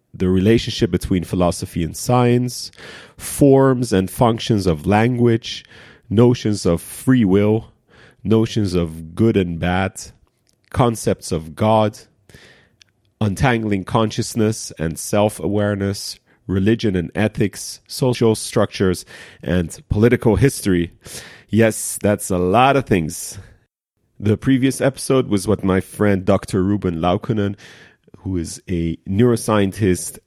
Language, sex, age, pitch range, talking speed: English, male, 40-59, 90-115 Hz, 110 wpm